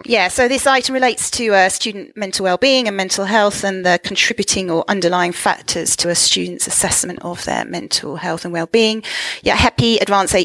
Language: English